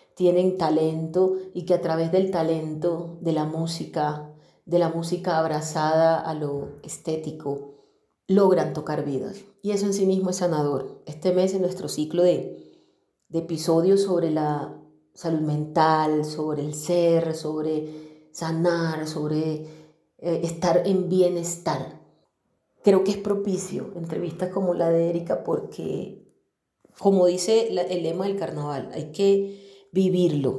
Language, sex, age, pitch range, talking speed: Spanish, female, 30-49, 155-185 Hz, 135 wpm